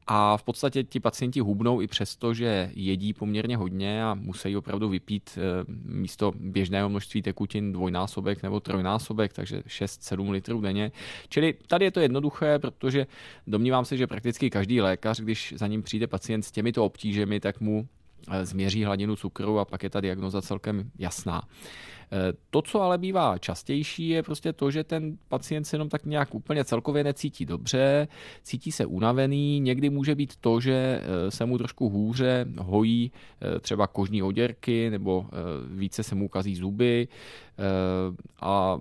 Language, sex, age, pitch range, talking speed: Czech, male, 20-39, 100-125 Hz, 155 wpm